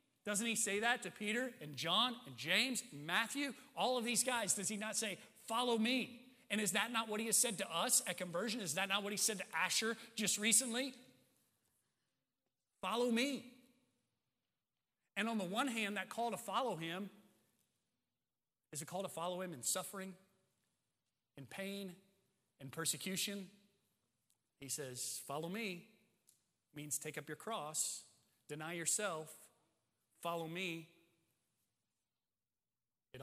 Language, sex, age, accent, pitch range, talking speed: English, male, 30-49, American, 135-200 Hz, 150 wpm